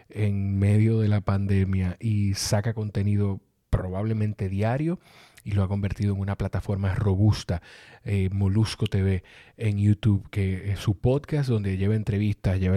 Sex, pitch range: male, 100-115 Hz